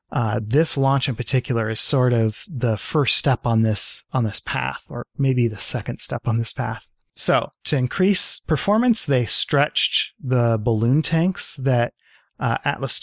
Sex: male